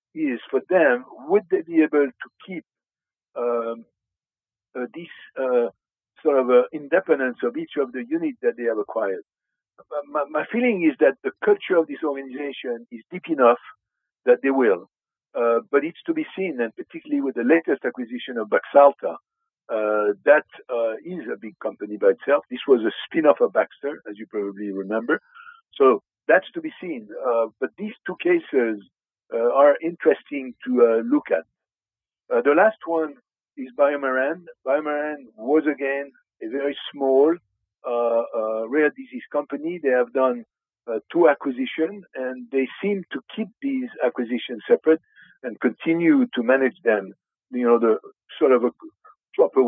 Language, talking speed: English, 165 wpm